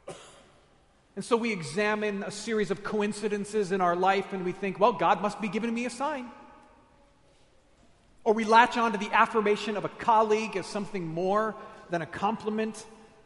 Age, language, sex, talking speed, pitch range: 40-59, English, male, 170 wpm, 190-225 Hz